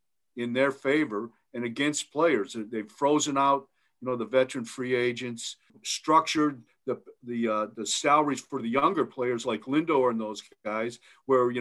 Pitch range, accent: 125-145 Hz, American